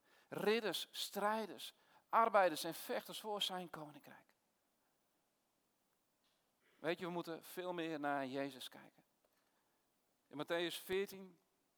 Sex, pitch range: male, 135-180 Hz